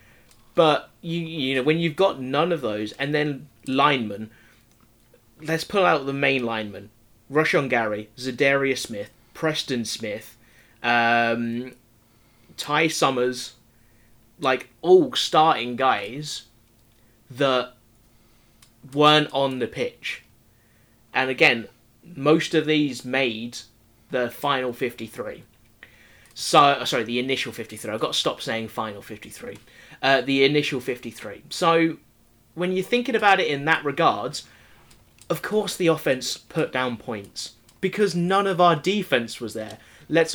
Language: English